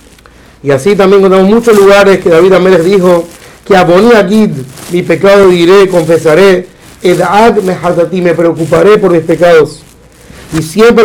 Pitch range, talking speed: 180-210 Hz, 145 wpm